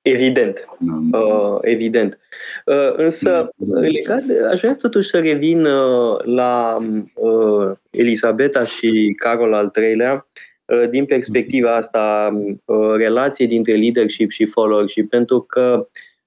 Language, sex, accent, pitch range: Romanian, male, native, 110-150 Hz